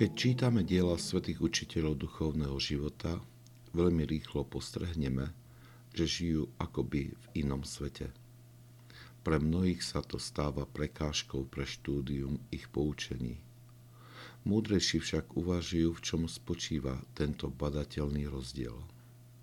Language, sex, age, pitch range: Slovak, male, 60-79, 70-115 Hz